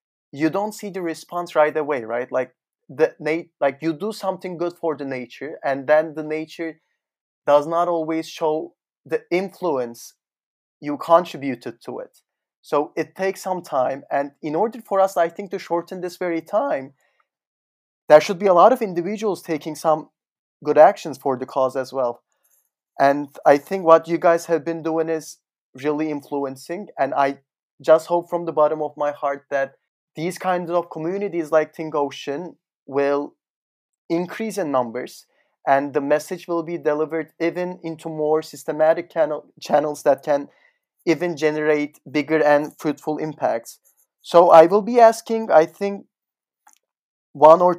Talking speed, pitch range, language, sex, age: 160 wpm, 145-175 Hz, English, male, 30-49